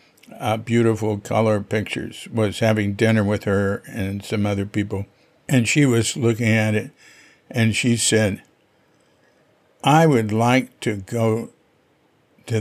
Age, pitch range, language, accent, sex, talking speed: 60-79, 95-110 Hz, English, American, male, 135 wpm